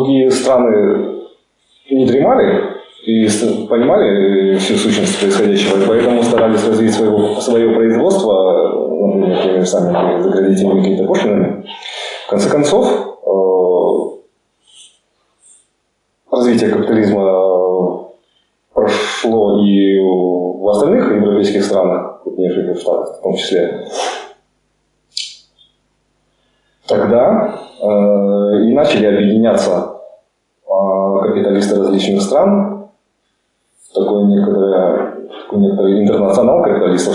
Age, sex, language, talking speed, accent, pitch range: 30-49, male, Russian, 85 wpm, native, 100-130 Hz